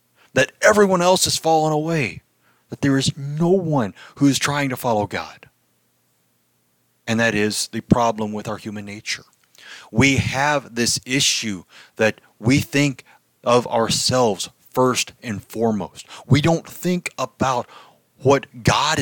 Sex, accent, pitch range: male, American, 105-145 Hz